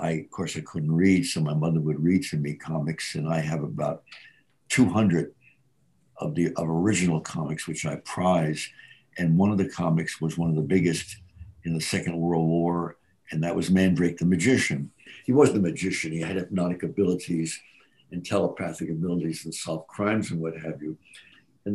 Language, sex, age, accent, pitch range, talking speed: English, male, 60-79, American, 85-100 Hz, 185 wpm